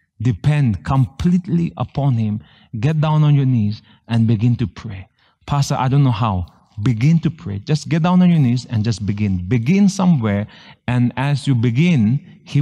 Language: English